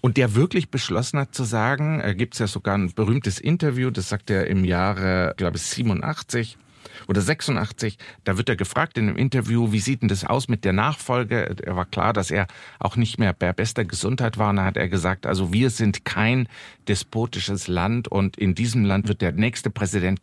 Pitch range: 95-130 Hz